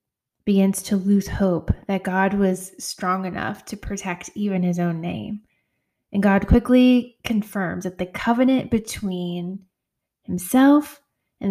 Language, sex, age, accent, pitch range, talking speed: English, female, 20-39, American, 175-210 Hz, 130 wpm